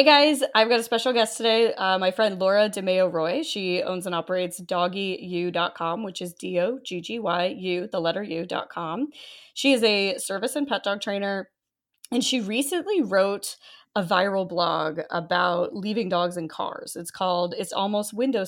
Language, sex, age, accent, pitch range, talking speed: English, female, 20-39, American, 175-230 Hz, 160 wpm